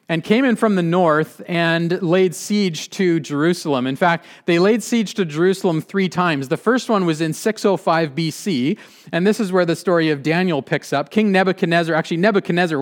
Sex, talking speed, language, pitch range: male, 190 wpm, English, 150-195 Hz